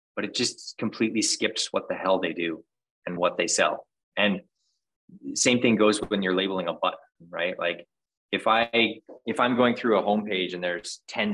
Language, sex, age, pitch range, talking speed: English, male, 20-39, 90-125 Hz, 190 wpm